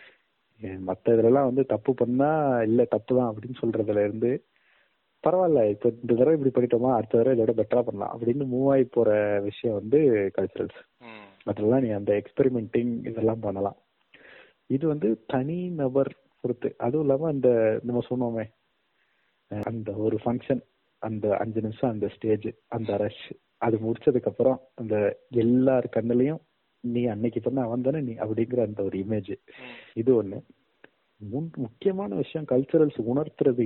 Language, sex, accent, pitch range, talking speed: Tamil, male, native, 110-135 Hz, 70 wpm